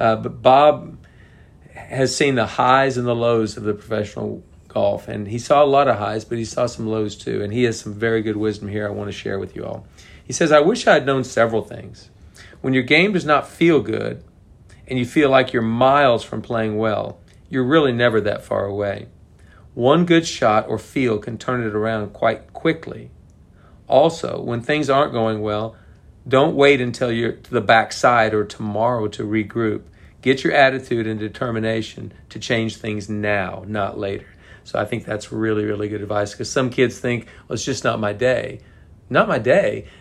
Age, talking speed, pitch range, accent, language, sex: 40-59, 200 wpm, 105-130 Hz, American, English, male